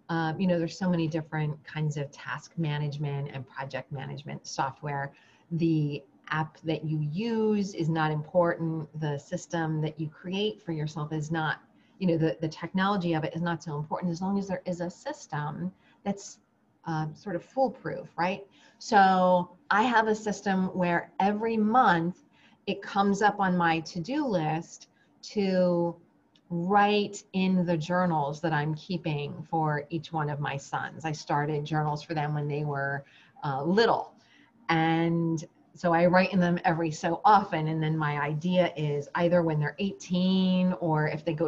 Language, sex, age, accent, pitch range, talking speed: English, female, 30-49, American, 155-190 Hz, 170 wpm